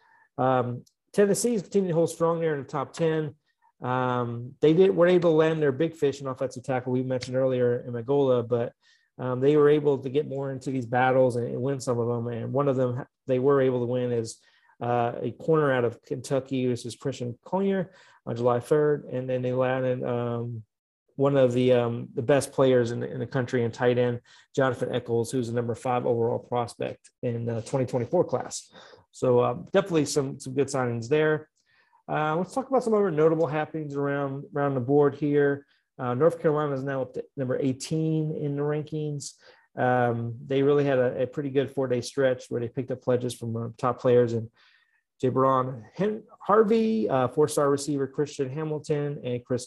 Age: 30-49